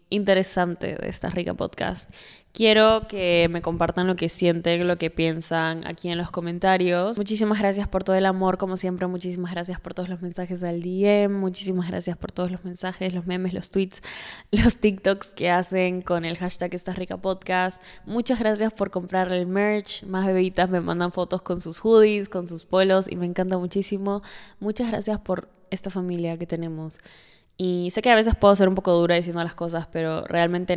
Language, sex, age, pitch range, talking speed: Spanish, female, 10-29, 175-200 Hz, 190 wpm